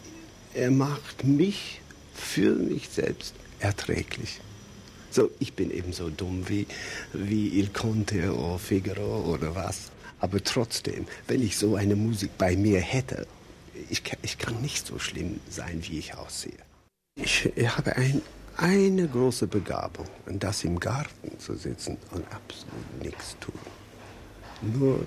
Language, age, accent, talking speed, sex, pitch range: German, 60-79, German, 135 wpm, male, 100-115 Hz